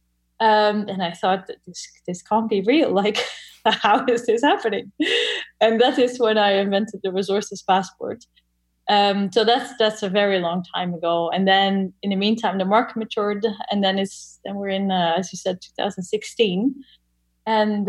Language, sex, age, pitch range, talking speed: English, female, 10-29, 195-235 Hz, 180 wpm